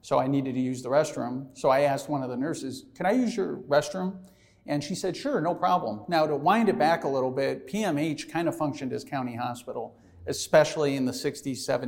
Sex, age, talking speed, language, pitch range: male, 40-59, 220 wpm, English, 130-155 Hz